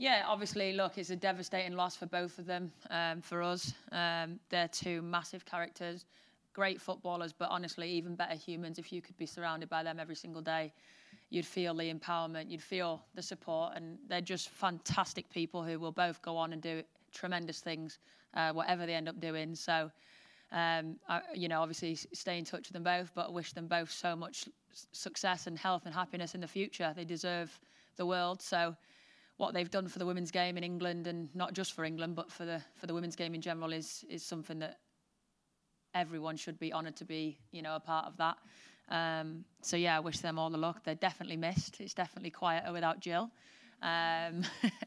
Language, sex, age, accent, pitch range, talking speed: English, female, 20-39, British, 165-180 Hz, 205 wpm